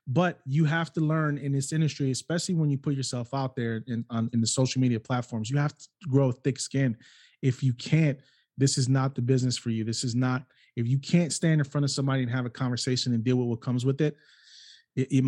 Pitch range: 130-155 Hz